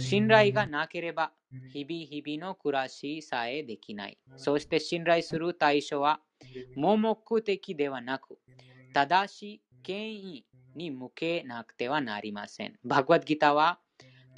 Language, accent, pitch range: Japanese, Indian, 130-175 Hz